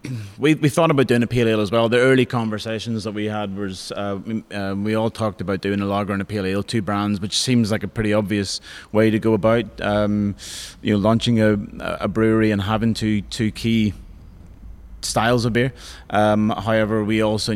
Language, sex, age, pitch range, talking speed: English, male, 20-39, 100-110 Hz, 210 wpm